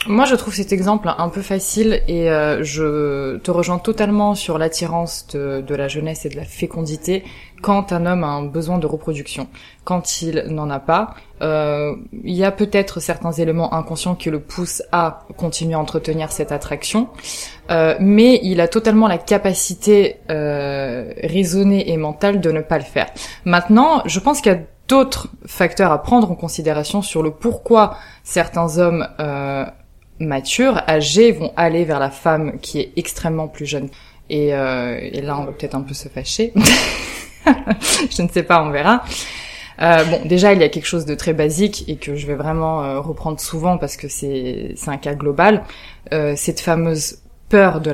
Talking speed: 185 wpm